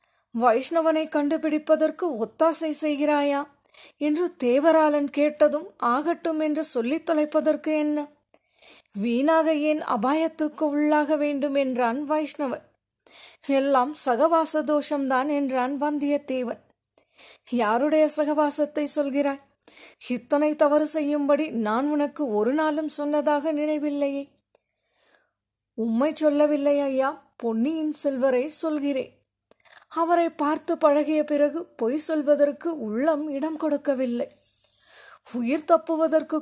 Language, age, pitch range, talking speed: Tamil, 20-39, 280-315 Hz, 85 wpm